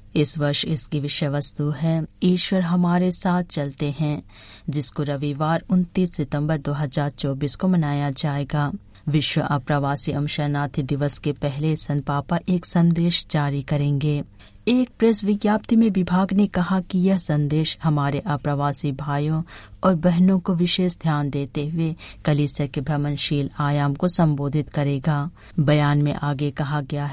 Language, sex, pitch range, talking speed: Hindi, female, 145-180 Hz, 140 wpm